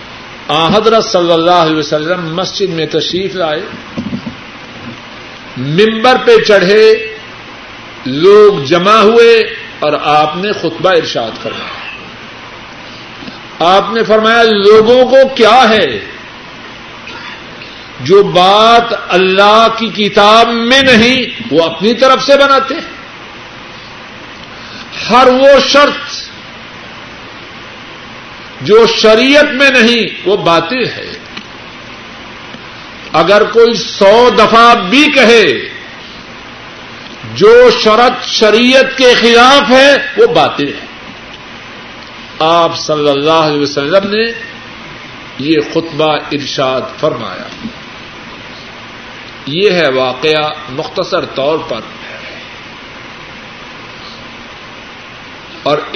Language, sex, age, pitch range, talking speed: Urdu, male, 50-69, 165-245 Hz, 90 wpm